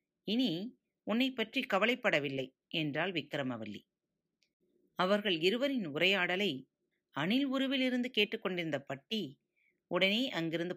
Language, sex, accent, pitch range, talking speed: Tamil, female, native, 160-215 Hz, 85 wpm